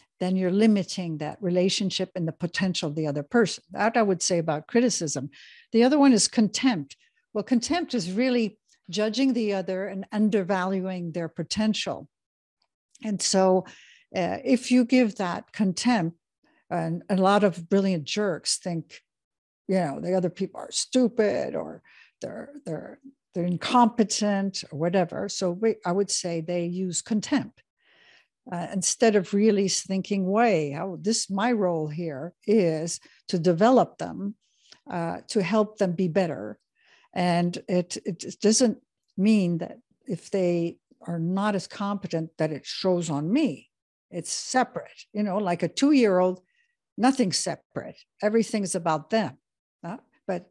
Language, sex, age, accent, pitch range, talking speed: English, female, 60-79, American, 175-225 Hz, 145 wpm